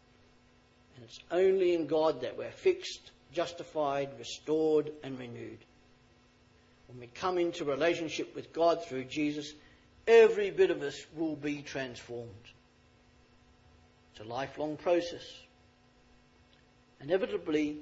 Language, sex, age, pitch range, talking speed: English, male, 50-69, 125-210 Hz, 110 wpm